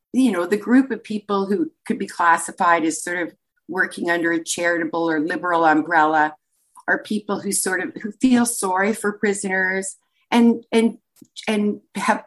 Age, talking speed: 50-69, 165 wpm